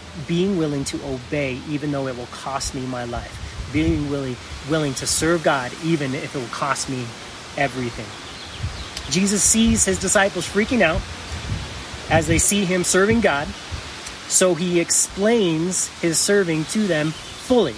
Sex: male